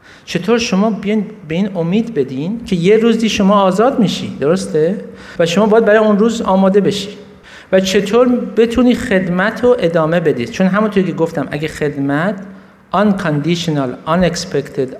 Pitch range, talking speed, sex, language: 155-205 Hz, 145 wpm, male, Persian